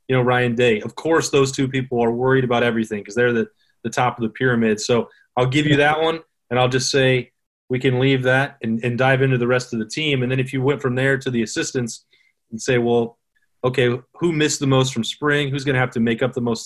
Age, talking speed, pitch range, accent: 30-49, 265 wpm, 120-135 Hz, American